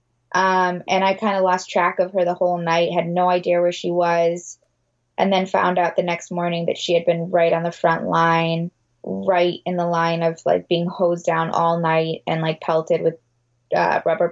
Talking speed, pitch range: 215 wpm, 165-190 Hz